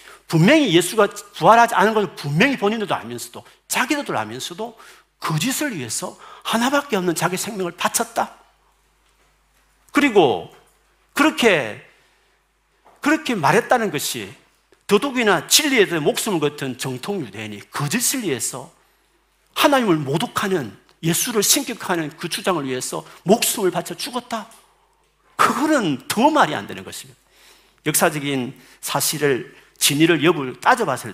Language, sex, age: Korean, male, 40-59